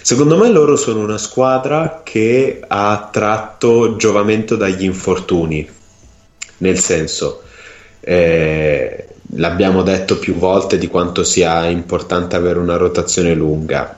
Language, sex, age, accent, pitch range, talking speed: Italian, male, 30-49, native, 85-100 Hz, 115 wpm